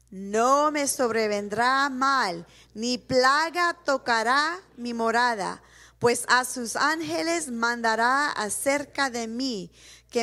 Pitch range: 205-270 Hz